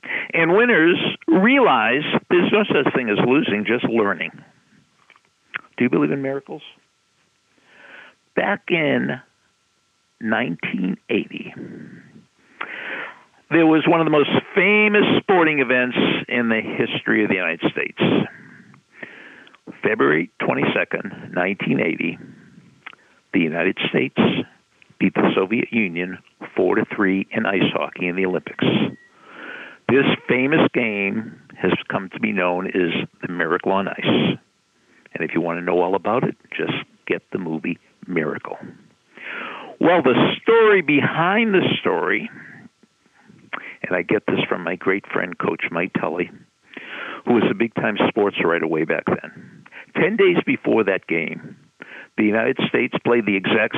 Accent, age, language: American, 60-79, English